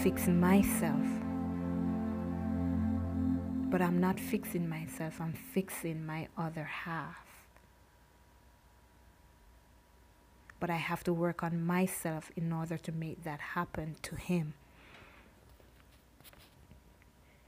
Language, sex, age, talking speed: English, female, 20-39, 95 wpm